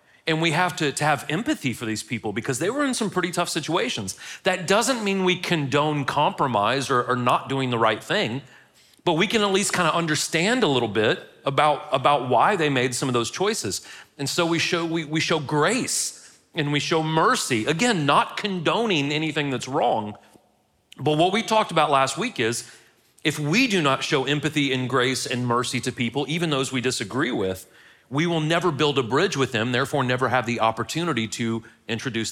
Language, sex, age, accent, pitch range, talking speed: English, male, 40-59, American, 120-165 Hz, 200 wpm